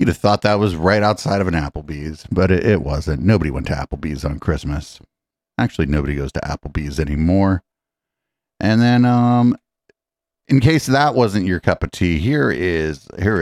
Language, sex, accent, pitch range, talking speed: English, male, American, 75-100 Hz, 180 wpm